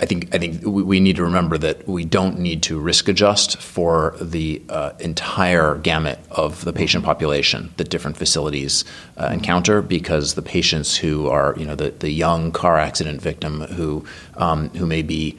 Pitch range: 75-90 Hz